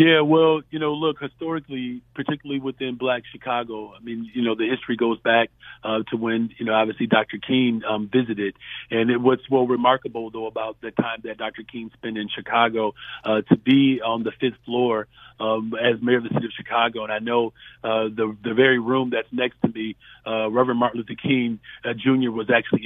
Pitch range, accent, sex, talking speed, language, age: 115-125 Hz, American, male, 205 wpm, English, 40-59